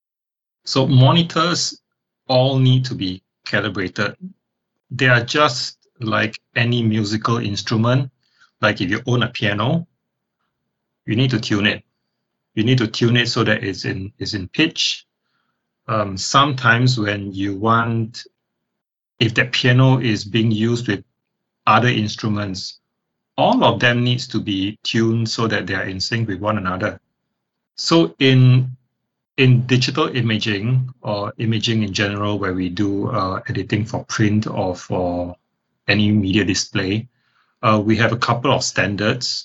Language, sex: English, male